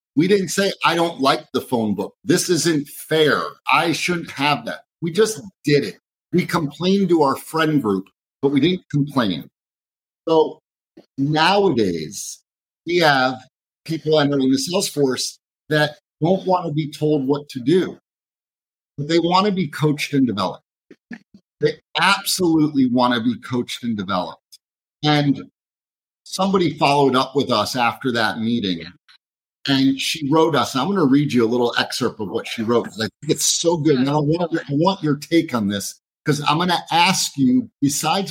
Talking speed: 170 wpm